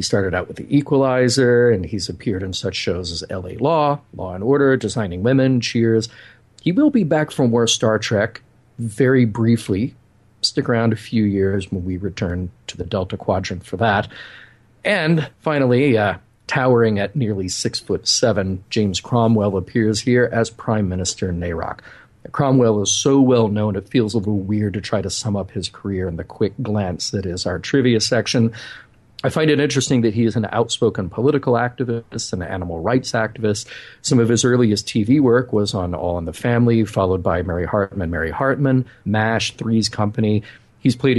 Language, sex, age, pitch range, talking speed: English, male, 40-59, 100-125 Hz, 185 wpm